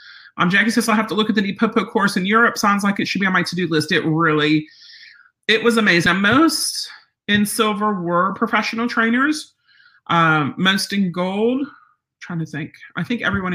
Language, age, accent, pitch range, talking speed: English, 40-59, American, 160-230 Hz, 195 wpm